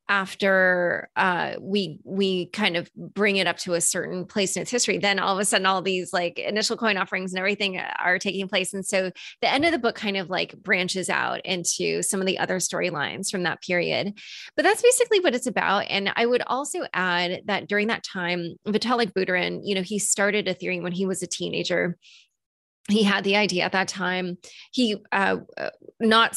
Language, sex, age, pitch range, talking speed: English, female, 20-39, 180-215 Hz, 205 wpm